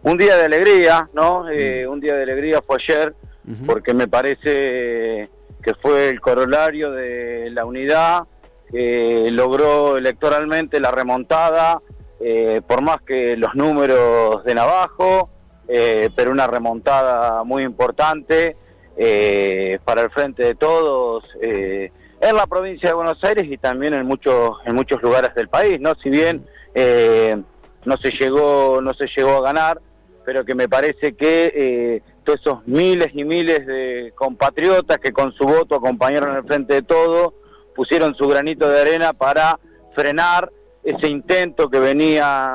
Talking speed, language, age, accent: 150 wpm, Spanish, 40-59, Argentinian